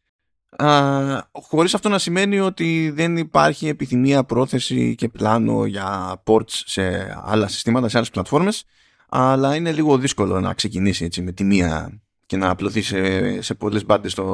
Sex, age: male, 20-39